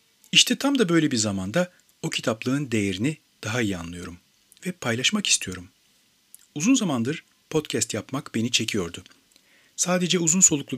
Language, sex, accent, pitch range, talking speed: Turkish, male, native, 110-150 Hz, 135 wpm